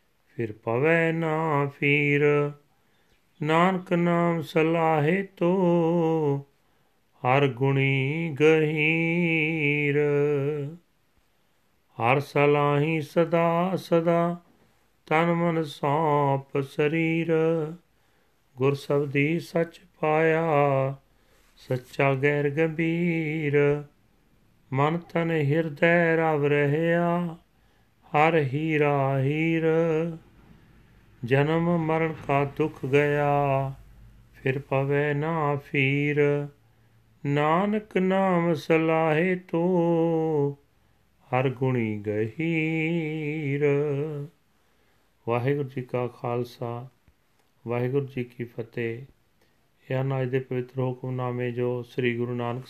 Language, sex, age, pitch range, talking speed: Punjabi, male, 40-59, 130-160 Hz, 75 wpm